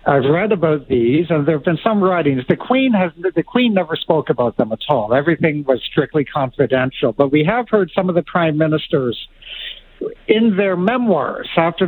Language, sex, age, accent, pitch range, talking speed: English, male, 60-79, American, 150-195 Hz, 190 wpm